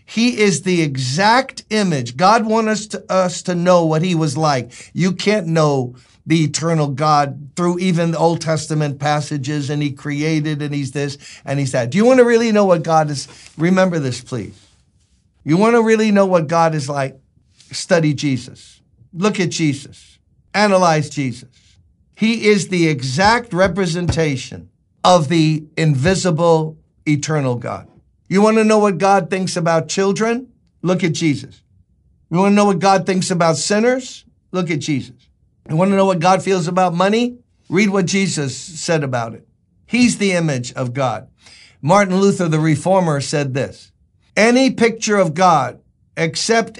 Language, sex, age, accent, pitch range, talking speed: English, male, 50-69, American, 135-190 Hz, 165 wpm